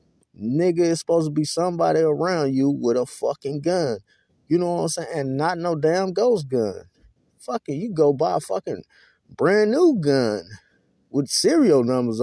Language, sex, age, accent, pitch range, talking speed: English, male, 20-39, American, 120-175 Hz, 170 wpm